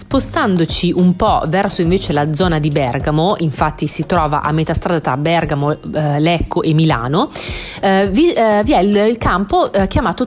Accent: native